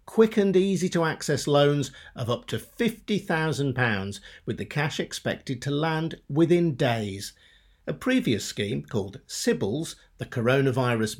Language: English